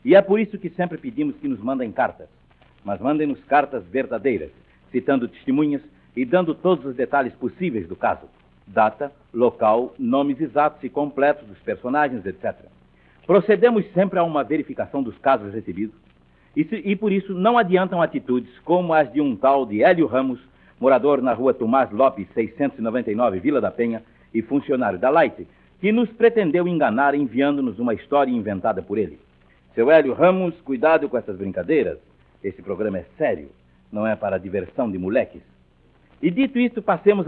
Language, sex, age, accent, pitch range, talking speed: Portuguese, male, 60-79, Brazilian, 120-185 Hz, 165 wpm